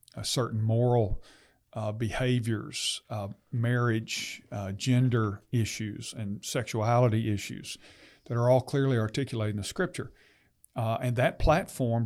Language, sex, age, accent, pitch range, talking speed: English, male, 50-69, American, 110-135 Hz, 125 wpm